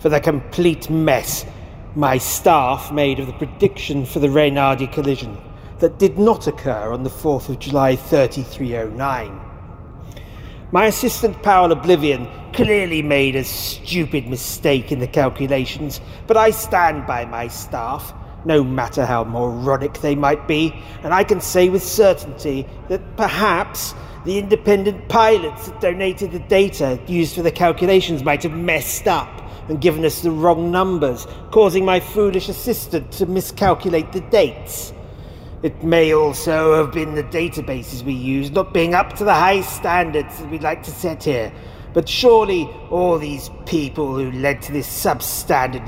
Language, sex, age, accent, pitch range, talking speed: English, male, 40-59, British, 135-180 Hz, 155 wpm